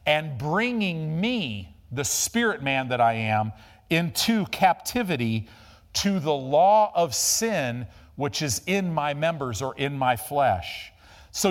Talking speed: 135 wpm